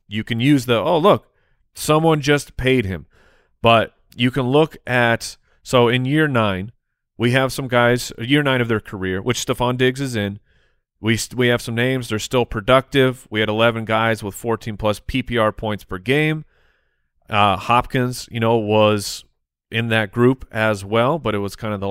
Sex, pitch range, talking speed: male, 105-130 Hz, 190 wpm